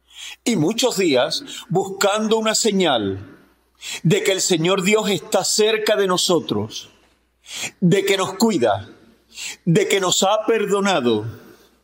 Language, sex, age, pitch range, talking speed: English, male, 40-59, 160-215 Hz, 120 wpm